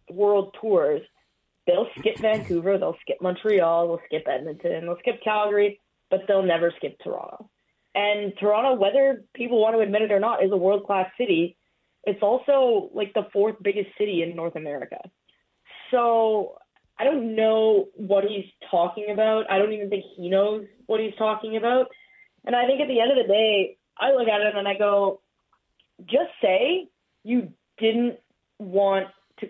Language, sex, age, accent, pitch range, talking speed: English, female, 20-39, American, 185-235 Hz, 170 wpm